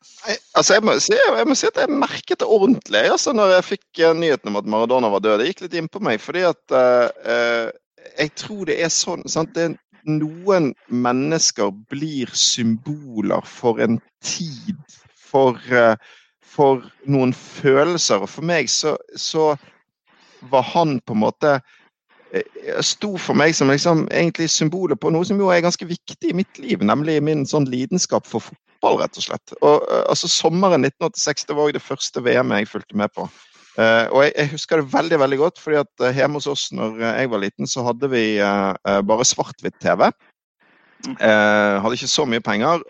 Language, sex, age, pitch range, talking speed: English, male, 50-69, 115-170 Hz, 165 wpm